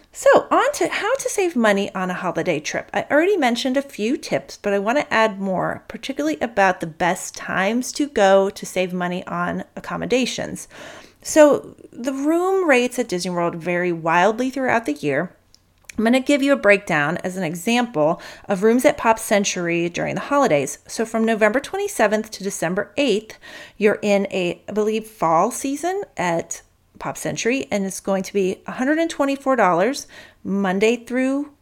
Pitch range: 185-260 Hz